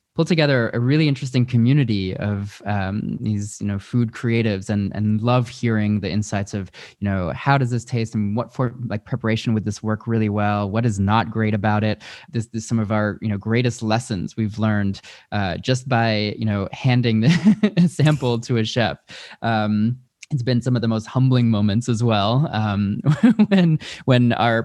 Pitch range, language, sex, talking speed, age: 105-125 Hz, English, male, 190 wpm, 20-39